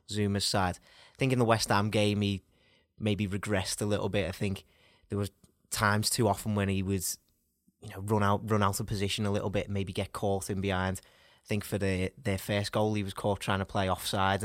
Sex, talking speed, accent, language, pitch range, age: male, 235 wpm, British, English, 95-110 Hz, 20-39